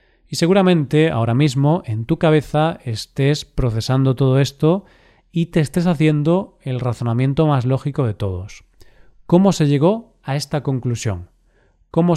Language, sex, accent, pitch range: Spanish, male, Spanish, 120-155 Hz